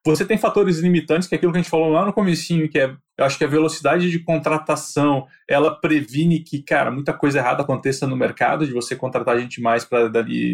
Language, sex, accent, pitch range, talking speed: Portuguese, male, Brazilian, 120-155 Hz, 230 wpm